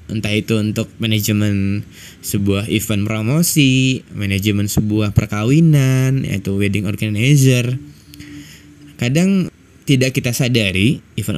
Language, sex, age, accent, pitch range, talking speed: Indonesian, male, 20-39, native, 105-125 Hz, 95 wpm